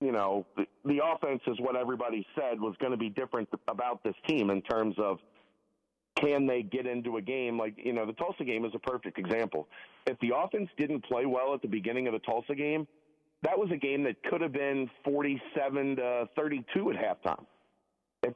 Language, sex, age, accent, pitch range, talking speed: English, male, 40-59, American, 110-135 Hz, 205 wpm